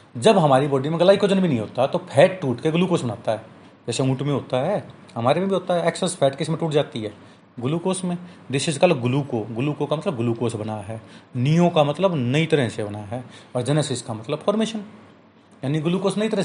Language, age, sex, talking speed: Hindi, 30-49, male, 225 wpm